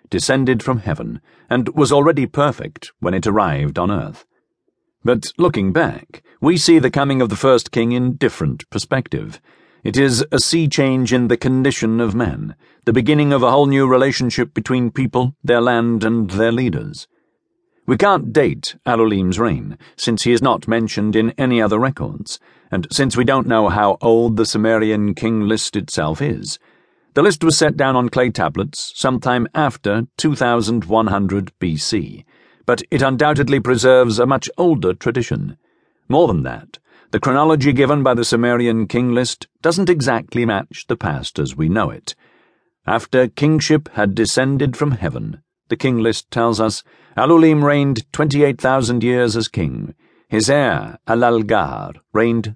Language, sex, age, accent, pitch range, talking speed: English, male, 50-69, British, 115-140 Hz, 160 wpm